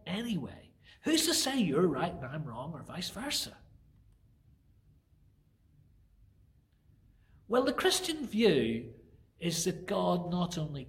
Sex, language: male, English